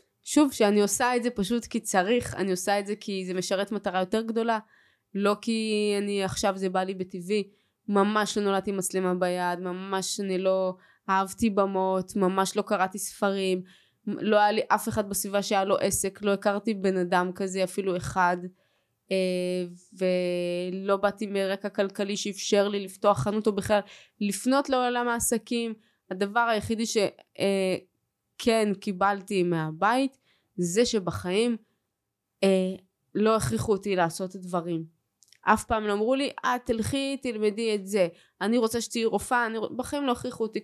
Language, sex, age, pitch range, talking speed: Hebrew, female, 20-39, 190-225 Hz, 155 wpm